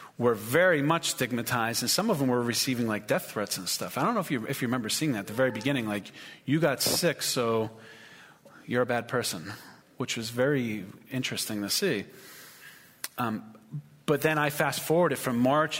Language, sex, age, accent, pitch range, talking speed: English, male, 40-59, American, 115-145 Hz, 195 wpm